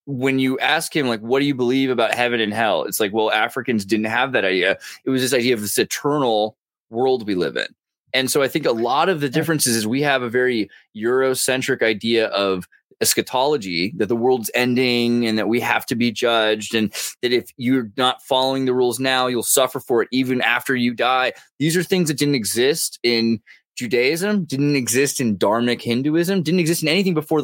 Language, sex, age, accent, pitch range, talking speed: English, male, 20-39, American, 115-135 Hz, 210 wpm